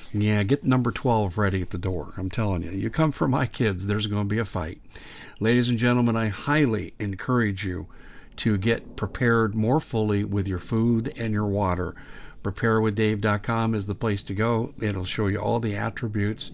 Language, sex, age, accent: English, male, 50-69, American